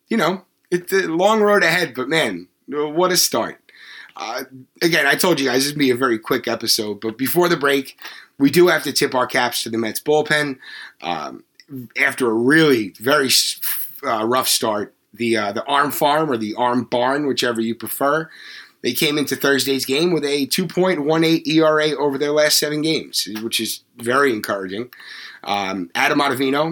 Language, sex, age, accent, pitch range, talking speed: English, male, 30-49, American, 115-145 Hz, 180 wpm